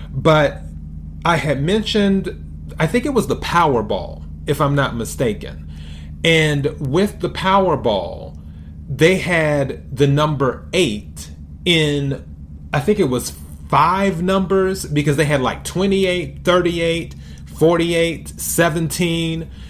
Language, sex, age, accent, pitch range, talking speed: English, male, 40-59, American, 105-165 Hz, 115 wpm